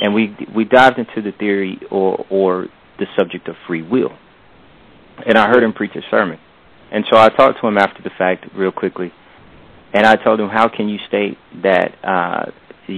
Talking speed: 195 wpm